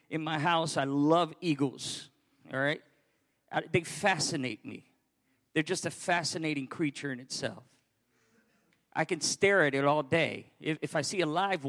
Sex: male